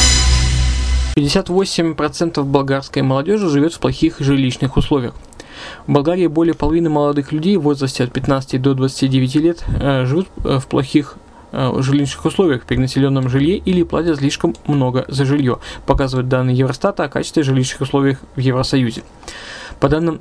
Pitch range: 130-155 Hz